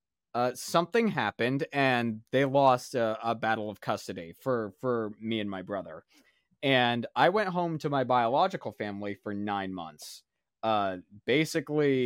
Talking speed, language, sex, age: 150 wpm, English, male, 20-39